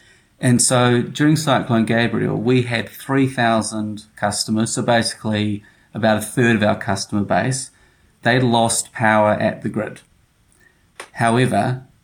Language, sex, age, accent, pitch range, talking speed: English, male, 30-49, Australian, 110-125 Hz, 125 wpm